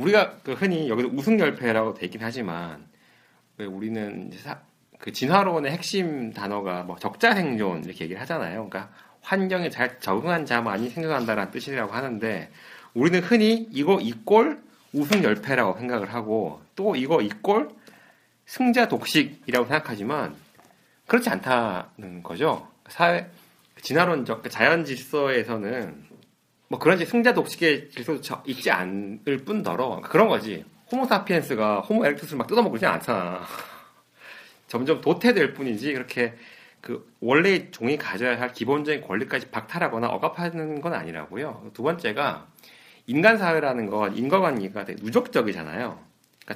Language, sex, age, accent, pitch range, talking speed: English, male, 40-59, Korean, 115-185 Hz, 110 wpm